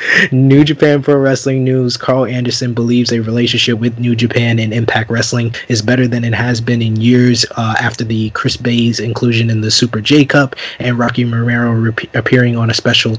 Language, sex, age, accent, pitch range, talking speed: English, male, 20-39, American, 115-125 Hz, 190 wpm